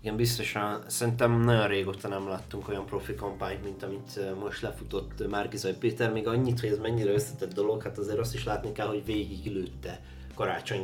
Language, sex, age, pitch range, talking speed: Hungarian, male, 20-39, 100-120 Hz, 175 wpm